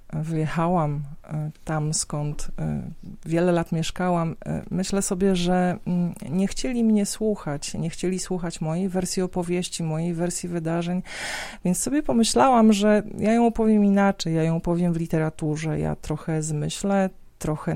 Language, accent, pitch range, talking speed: Polish, native, 165-195 Hz, 130 wpm